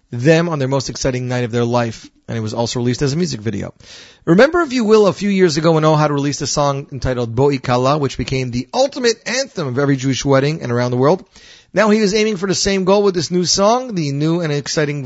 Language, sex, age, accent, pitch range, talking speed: English, male, 30-49, American, 130-175 Hz, 245 wpm